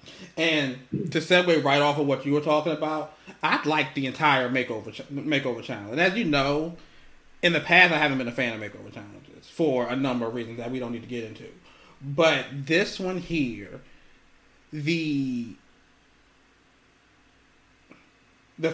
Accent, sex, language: American, male, English